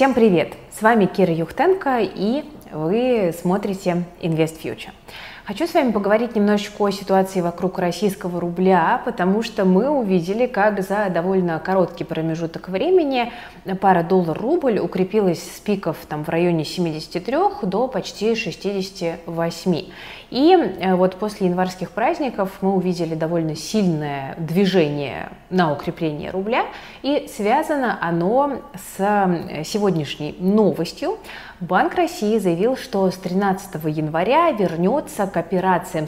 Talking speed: 120 wpm